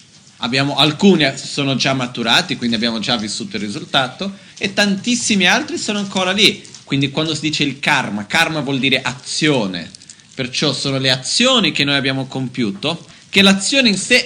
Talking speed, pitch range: 165 wpm, 135-185 Hz